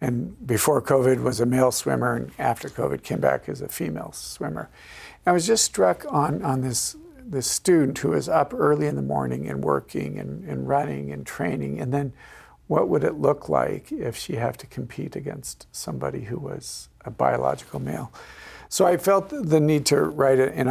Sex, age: male, 50-69